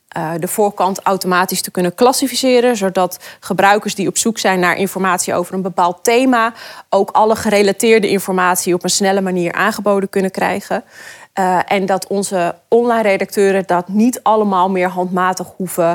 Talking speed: 160 wpm